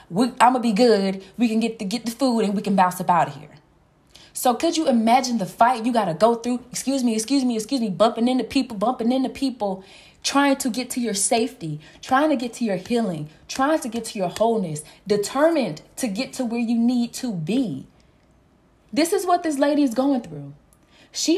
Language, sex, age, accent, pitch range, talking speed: English, female, 20-39, American, 210-270 Hz, 220 wpm